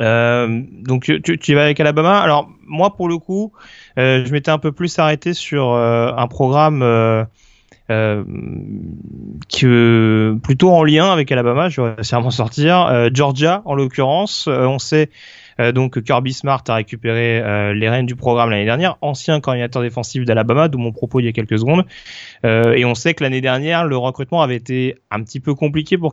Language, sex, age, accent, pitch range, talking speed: French, male, 30-49, French, 120-150 Hz, 195 wpm